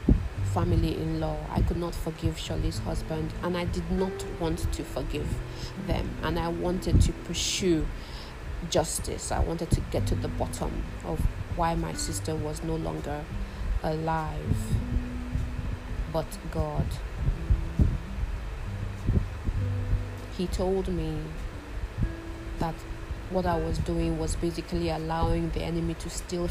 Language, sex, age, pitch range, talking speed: English, female, 30-49, 85-110 Hz, 125 wpm